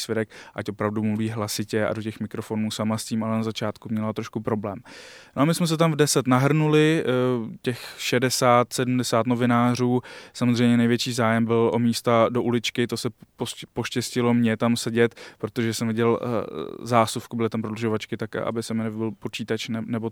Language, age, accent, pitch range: Czech, 20-39, native, 110-120 Hz